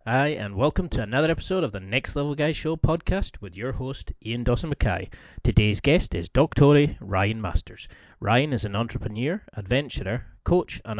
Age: 30-49